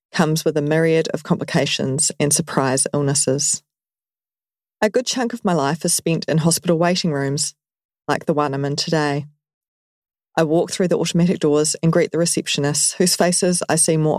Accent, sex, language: Australian, female, English